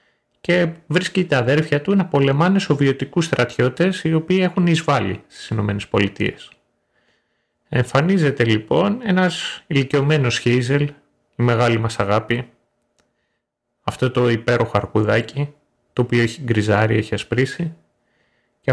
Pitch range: 110-150 Hz